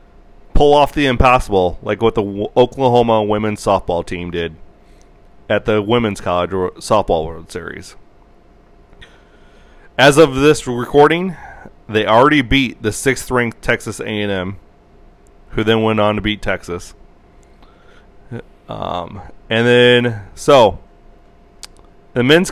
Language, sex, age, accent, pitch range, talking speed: English, male, 30-49, American, 105-135 Hz, 115 wpm